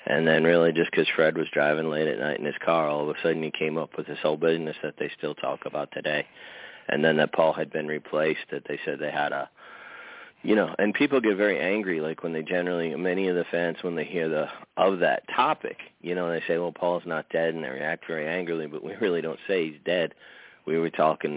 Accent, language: American, English